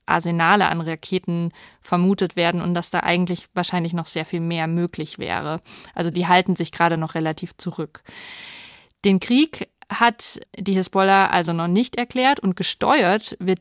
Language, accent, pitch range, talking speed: German, German, 175-210 Hz, 160 wpm